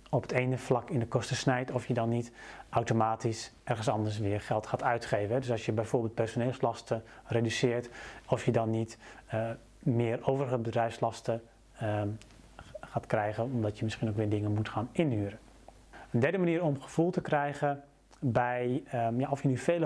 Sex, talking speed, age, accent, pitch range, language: male, 170 wpm, 30-49, Dutch, 115-135 Hz, Dutch